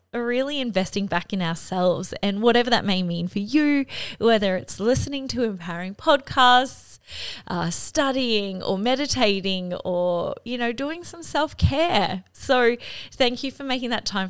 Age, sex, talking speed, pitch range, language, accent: 20-39, female, 150 wpm, 190-245 Hz, English, Australian